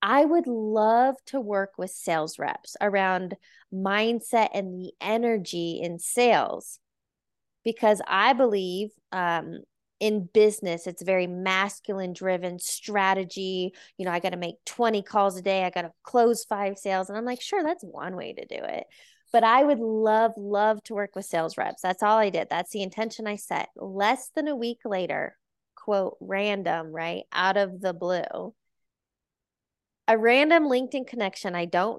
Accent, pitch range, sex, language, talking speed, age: American, 190-245 Hz, female, English, 165 wpm, 20-39